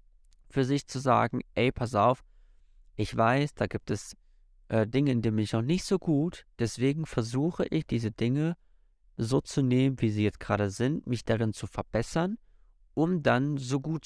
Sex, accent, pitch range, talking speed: male, German, 100-130 Hz, 180 wpm